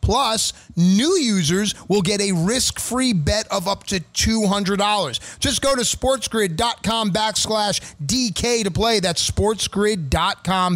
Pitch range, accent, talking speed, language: 155-210 Hz, American, 125 wpm, English